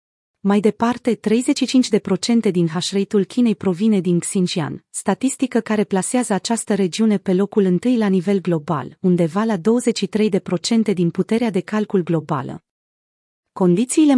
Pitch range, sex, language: 180-225 Hz, female, Romanian